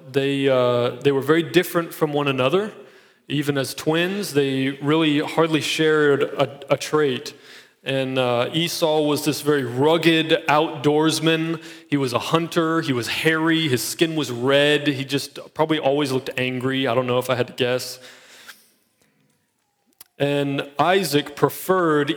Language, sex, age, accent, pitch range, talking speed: English, male, 20-39, American, 130-155 Hz, 150 wpm